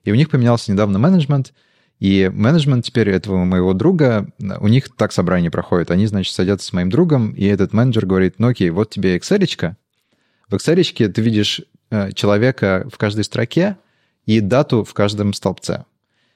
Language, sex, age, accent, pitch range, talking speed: Russian, male, 30-49, native, 100-135 Hz, 170 wpm